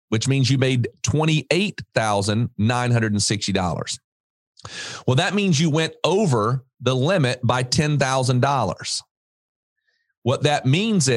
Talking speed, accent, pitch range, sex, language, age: 95 wpm, American, 120-155 Hz, male, English, 40-59